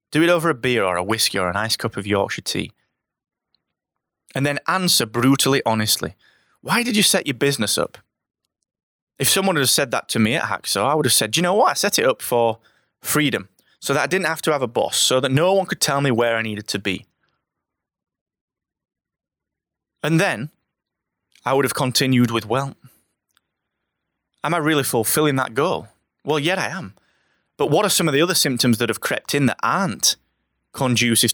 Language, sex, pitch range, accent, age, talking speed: English, male, 105-135 Hz, British, 20-39, 195 wpm